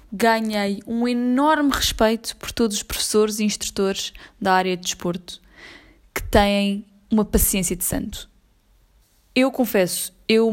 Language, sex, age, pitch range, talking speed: Portuguese, female, 20-39, 175-200 Hz, 130 wpm